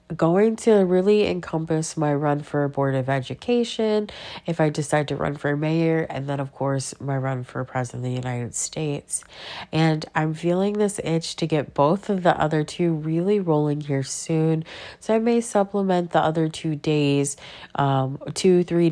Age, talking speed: 30-49, 180 wpm